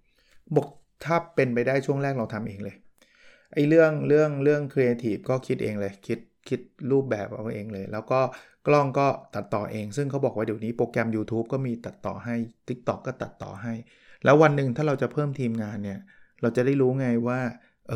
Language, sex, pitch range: Thai, male, 110-135 Hz